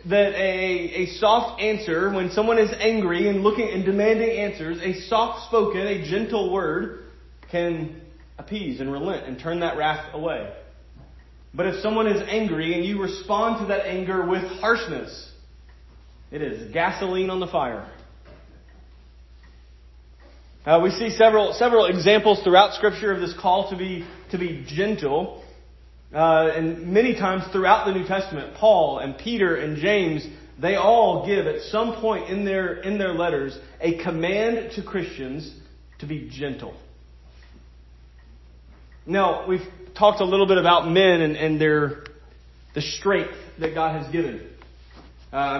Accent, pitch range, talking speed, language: American, 135-200 Hz, 150 wpm, English